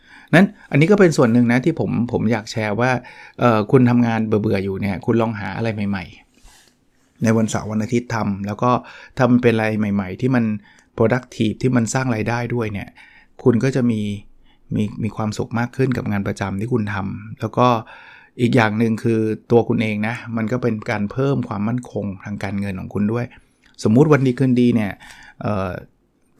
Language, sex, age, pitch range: Thai, male, 20-39, 110-125 Hz